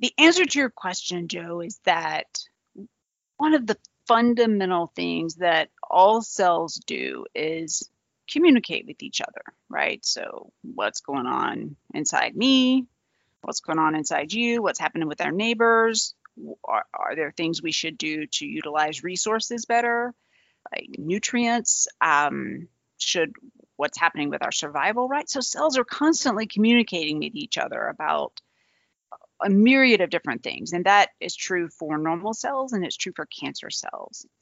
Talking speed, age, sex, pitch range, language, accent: 150 wpm, 30-49, female, 165-235 Hz, English, American